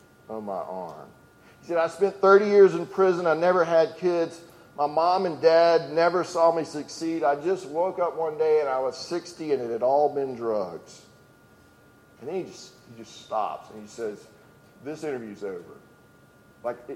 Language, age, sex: English, 40-59, male